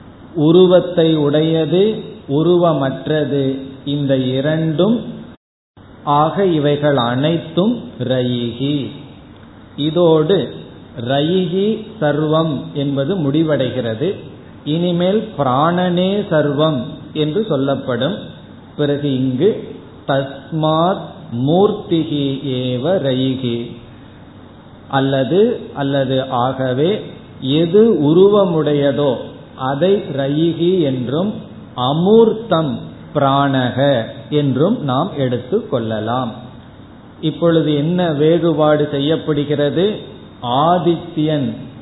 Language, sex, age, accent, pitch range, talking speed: Tamil, male, 50-69, native, 130-170 Hz, 60 wpm